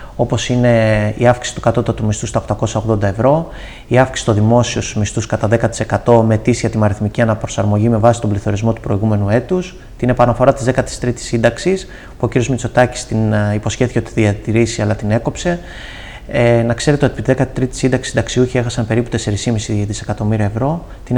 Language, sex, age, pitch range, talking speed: Greek, male, 30-49, 110-125 Hz, 165 wpm